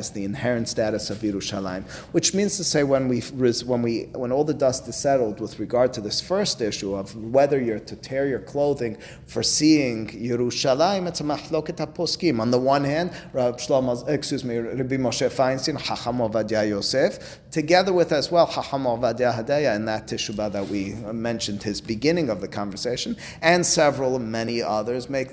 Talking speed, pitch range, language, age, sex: 175 wpm, 110-150 Hz, English, 30-49, male